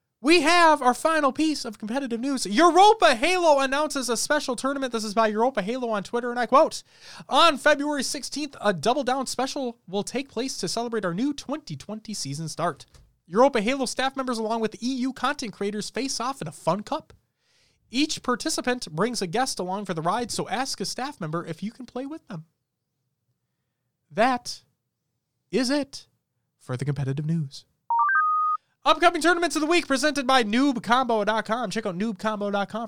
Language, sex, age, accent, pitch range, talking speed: English, male, 20-39, American, 190-270 Hz, 170 wpm